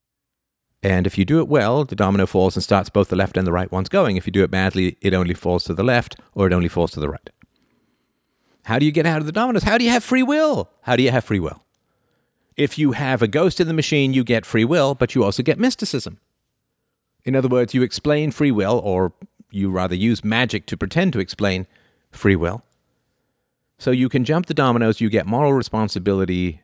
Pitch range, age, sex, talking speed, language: 95-145 Hz, 50-69, male, 230 wpm, English